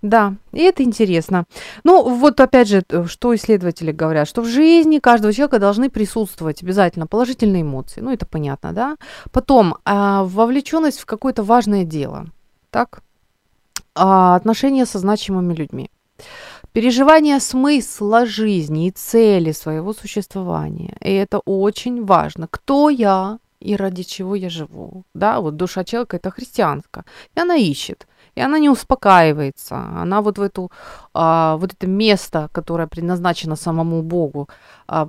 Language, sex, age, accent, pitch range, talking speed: Ukrainian, female, 30-49, native, 170-240 Hz, 140 wpm